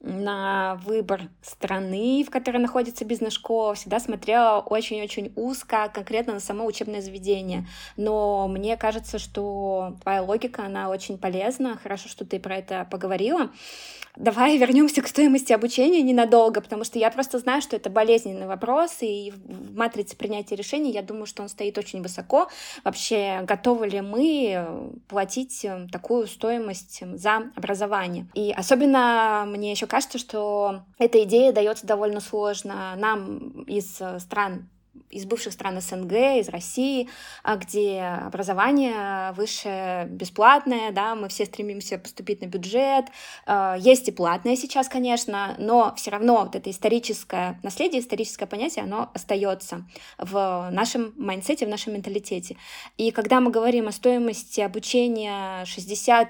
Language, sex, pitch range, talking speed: Russian, female, 200-240 Hz, 135 wpm